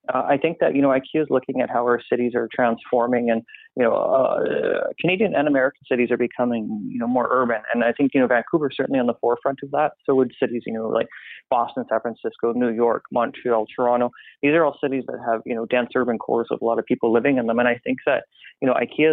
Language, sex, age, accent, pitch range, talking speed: English, male, 30-49, American, 115-130 Hz, 255 wpm